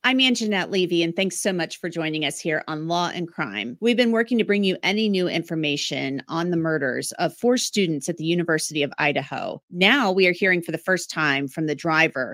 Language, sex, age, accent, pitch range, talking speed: English, female, 30-49, American, 155-195 Hz, 225 wpm